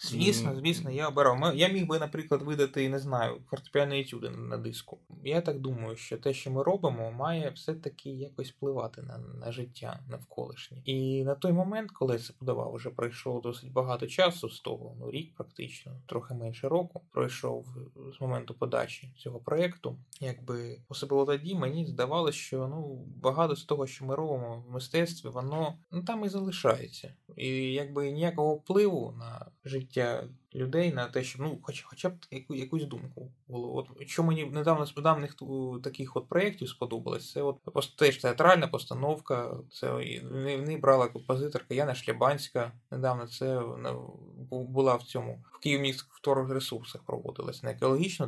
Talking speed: 165 wpm